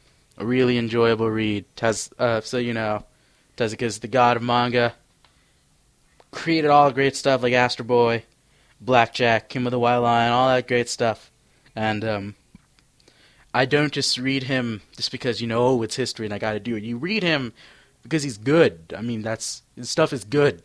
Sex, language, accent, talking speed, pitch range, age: male, English, American, 185 wpm, 110-135 Hz, 20-39